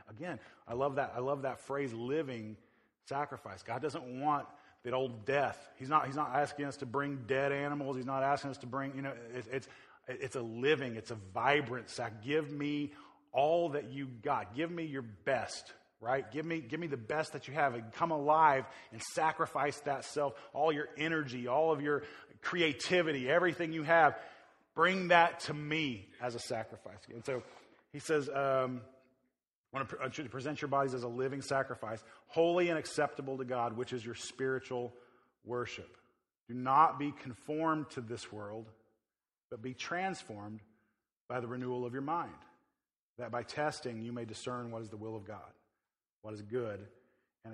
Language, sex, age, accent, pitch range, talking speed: English, male, 30-49, American, 120-145 Hz, 180 wpm